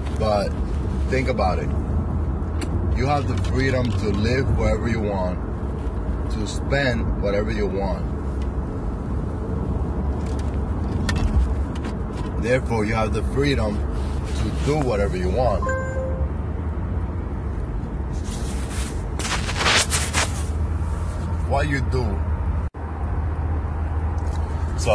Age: 30-49